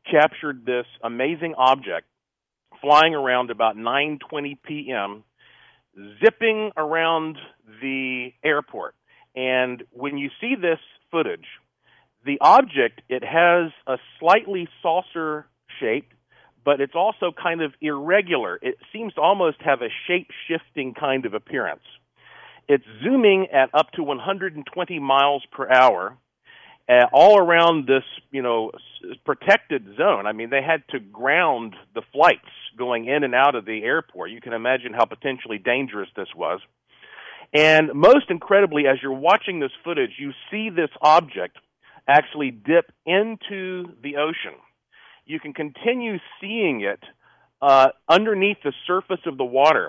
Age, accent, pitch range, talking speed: 40-59, American, 130-180 Hz, 135 wpm